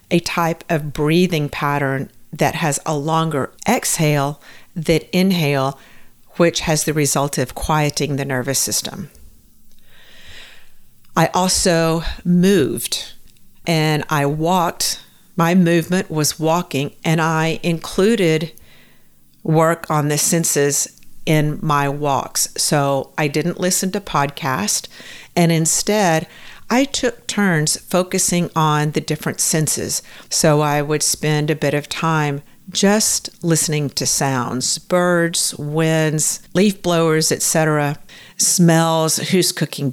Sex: female